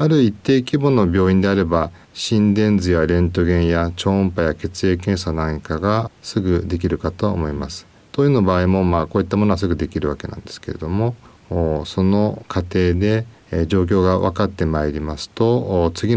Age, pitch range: 40-59, 85-110 Hz